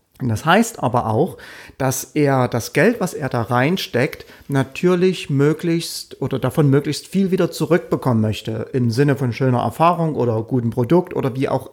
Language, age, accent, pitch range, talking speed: German, 40-59, German, 125-170 Hz, 165 wpm